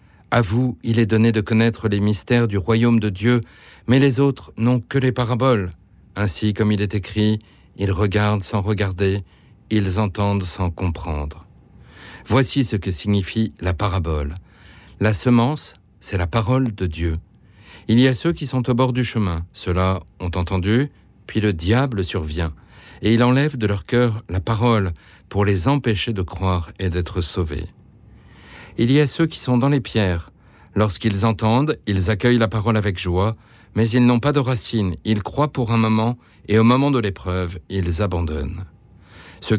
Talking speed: 175 wpm